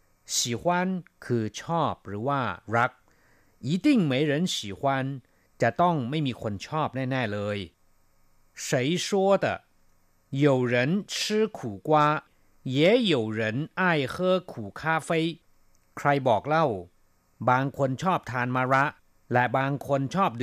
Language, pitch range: Thai, 115-155 Hz